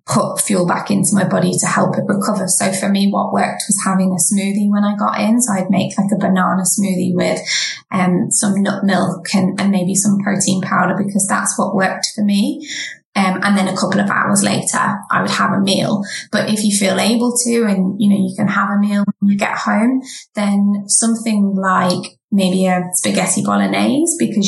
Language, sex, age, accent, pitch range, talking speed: English, female, 20-39, British, 180-205 Hz, 210 wpm